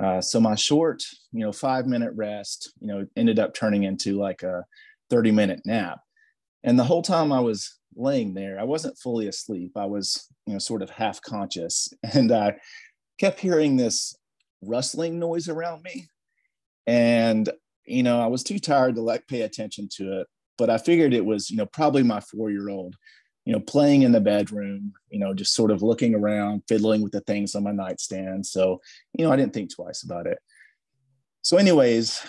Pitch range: 105-145 Hz